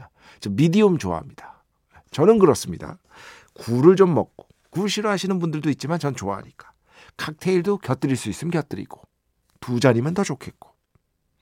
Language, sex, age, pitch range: Korean, male, 50-69, 105-160 Hz